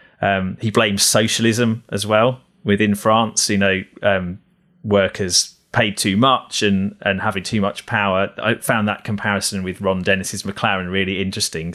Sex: male